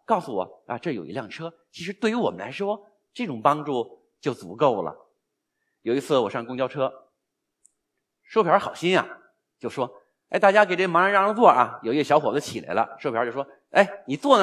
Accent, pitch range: native, 150-235 Hz